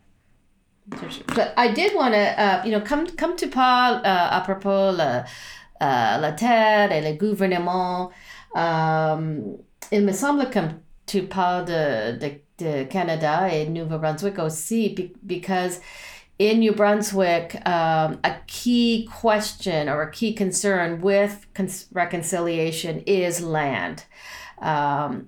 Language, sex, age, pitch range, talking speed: English, female, 40-59, 160-205 Hz, 130 wpm